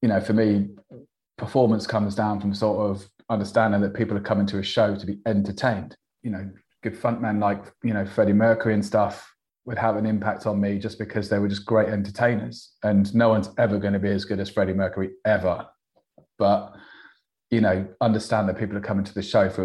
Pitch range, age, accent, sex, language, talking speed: 100-115 Hz, 30-49, British, male, English, 215 wpm